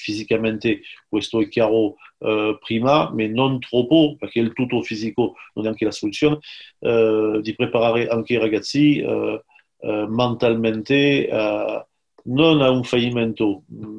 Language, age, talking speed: Italian, 40-59, 135 wpm